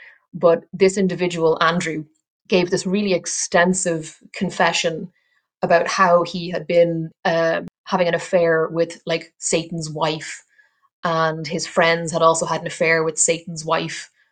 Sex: female